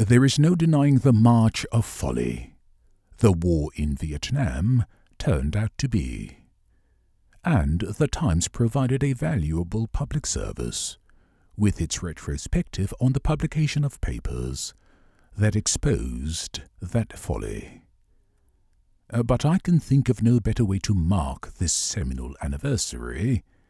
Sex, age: male, 50-69